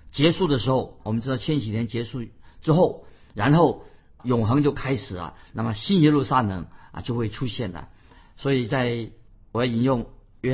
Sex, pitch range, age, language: male, 115-150 Hz, 50-69, Chinese